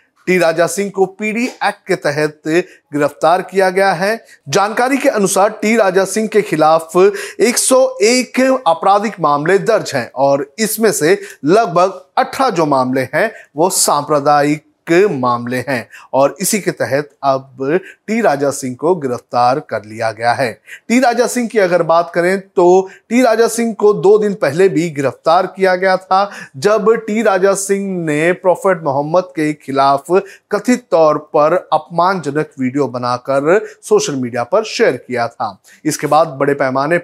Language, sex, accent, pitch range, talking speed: Hindi, male, native, 145-200 Hz, 155 wpm